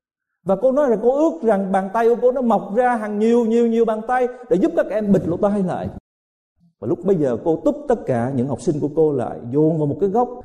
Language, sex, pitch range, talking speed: Vietnamese, male, 130-205 Hz, 270 wpm